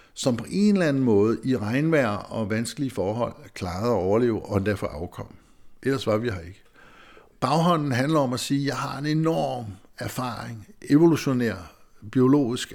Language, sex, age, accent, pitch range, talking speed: Danish, male, 60-79, native, 110-130 Hz, 165 wpm